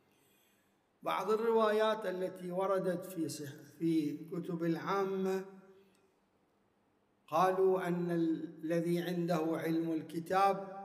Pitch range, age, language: 160-195 Hz, 50-69, Arabic